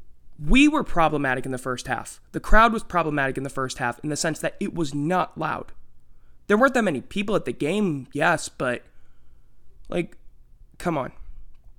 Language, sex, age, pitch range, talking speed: English, male, 20-39, 125-185 Hz, 185 wpm